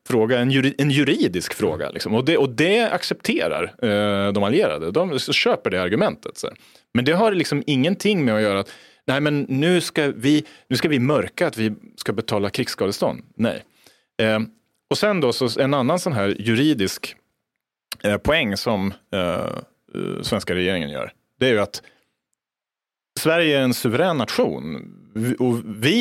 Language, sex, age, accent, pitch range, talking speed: English, male, 30-49, Norwegian, 100-150 Hz, 160 wpm